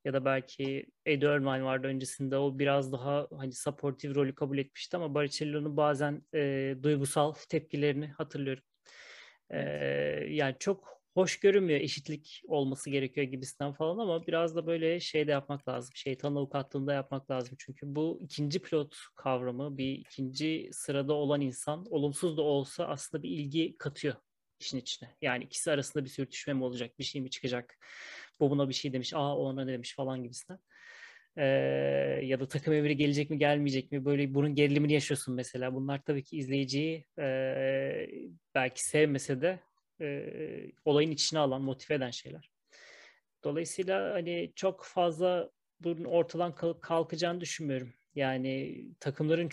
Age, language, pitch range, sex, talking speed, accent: 30-49, Turkish, 135-155 Hz, male, 150 wpm, native